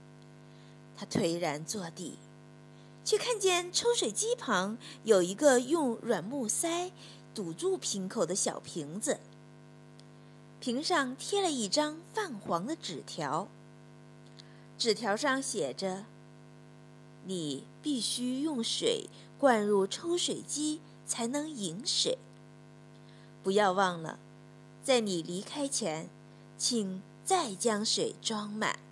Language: Chinese